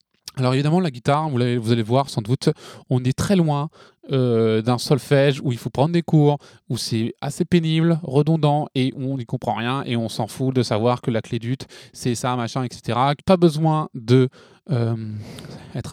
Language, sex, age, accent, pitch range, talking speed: French, male, 20-39, French, 125-155 Hz, 190 wpm